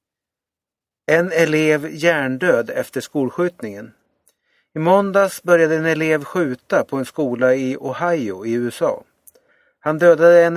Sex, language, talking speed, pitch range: male, Swedish, 120 wpm, 130-175 Hz